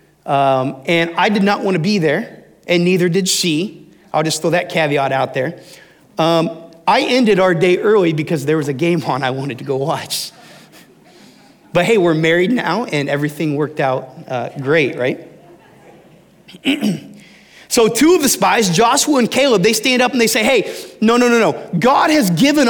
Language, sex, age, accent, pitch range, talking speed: English, male, 30-49, American, 165-225 Hz, 190 wpm